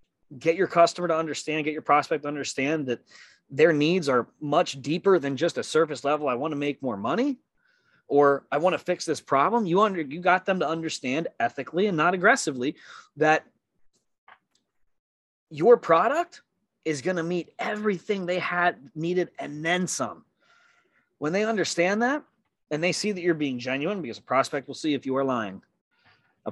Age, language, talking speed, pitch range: 20-39, English, 180 wpm, 125-165 Hz